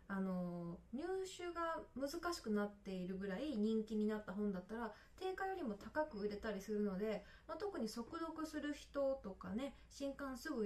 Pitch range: 200-290 Hz